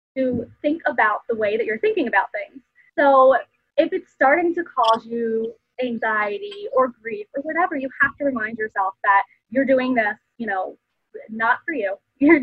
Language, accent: English, American